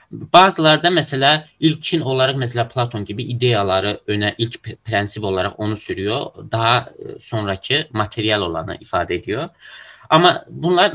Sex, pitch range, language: male, 105-130 Hz, Turkish